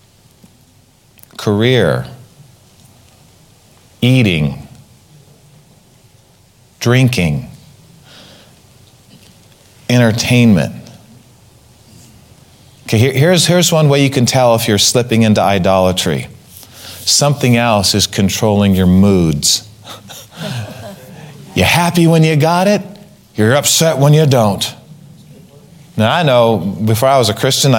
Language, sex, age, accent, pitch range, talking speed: English, male, 40-59, American, 100-145 Hz, 95 wpm